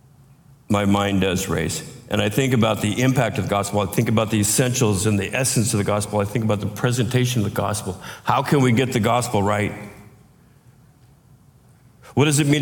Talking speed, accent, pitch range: 205 wpm, American, 110-140 Hz